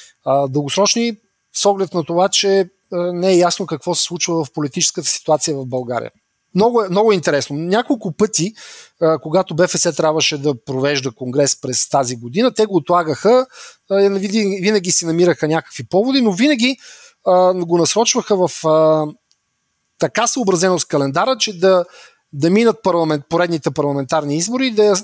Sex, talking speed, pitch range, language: male, 140 wpm, 155-215 Hz, English